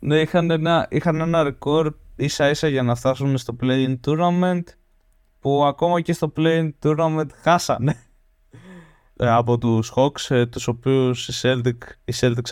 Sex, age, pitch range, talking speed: male, 20-39, 120-150 Hz, 140 wpm